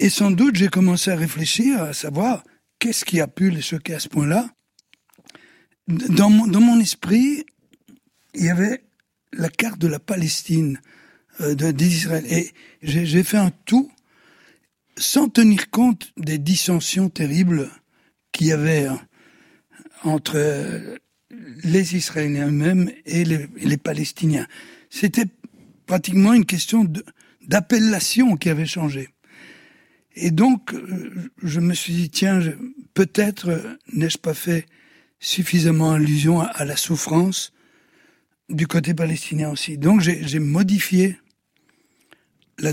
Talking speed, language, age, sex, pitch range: 120 wpm, French, 60-79, male, 165-230 Hz